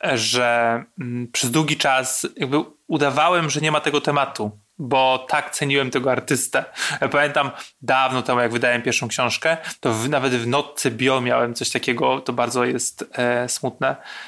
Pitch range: 125-150 Hz